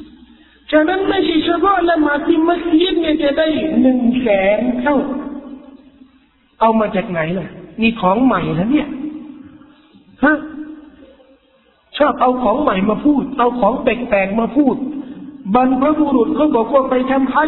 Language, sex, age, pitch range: Thai, male, 50-69, 240-300 Hz